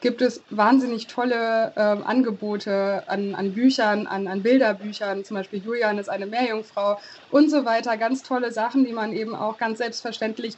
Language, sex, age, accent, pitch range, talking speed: German, female, 20-39, German, 200-230 Hz, 170 wpm